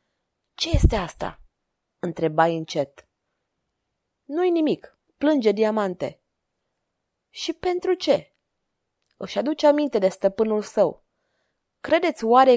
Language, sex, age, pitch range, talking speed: Romanian, female, 20-39, 195-260 Hz, 95 wpm